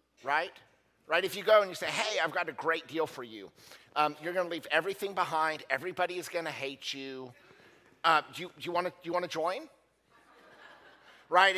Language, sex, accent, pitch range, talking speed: English, male, American, 130-170 Hz, 220 wpm